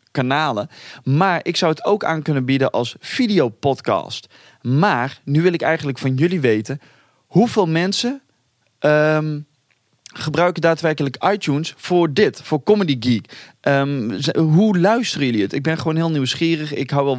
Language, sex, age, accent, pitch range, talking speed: Dutch, male, 20-39, Dutch, 125-160 Hz, 145 wpm